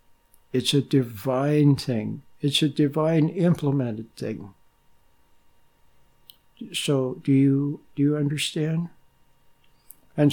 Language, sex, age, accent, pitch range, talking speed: English, male, 60-79, American, 125-170 Hz, 95 wpm